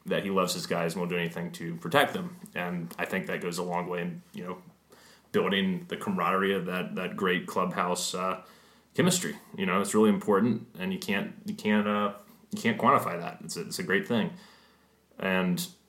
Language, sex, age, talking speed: English, male, 30-49, 210 wpm